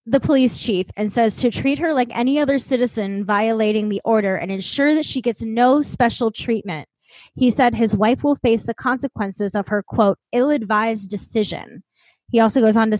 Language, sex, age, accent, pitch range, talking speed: English, female, 10-29, American, 200-250 Hz, 190 wpm